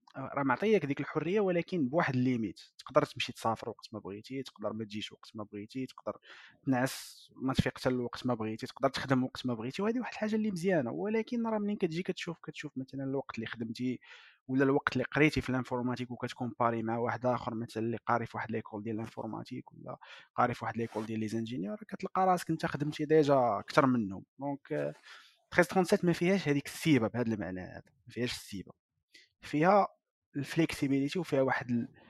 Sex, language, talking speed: male, Arabic, 180 wpm